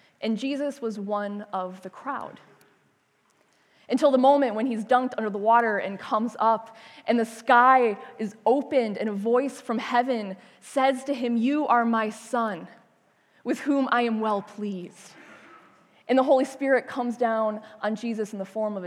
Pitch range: 215-265 Hz